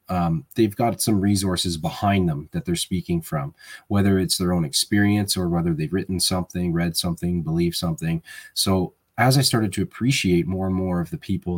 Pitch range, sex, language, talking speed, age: 85-95 Hz, male, English, 190 wpm, 20-39